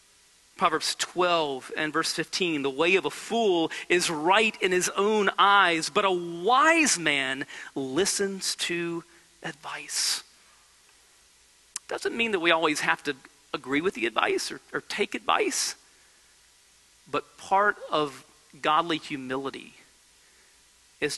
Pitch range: 155-245 Hz